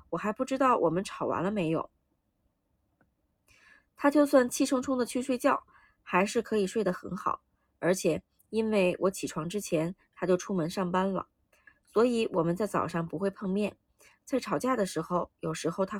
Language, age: Chinese, 20-39